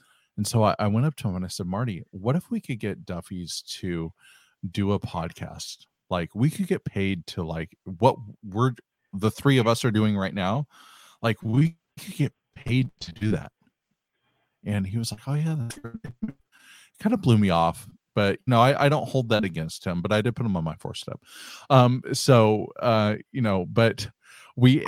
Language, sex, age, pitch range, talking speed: English, male, 40-59, 95-130 Hz, 205 wpm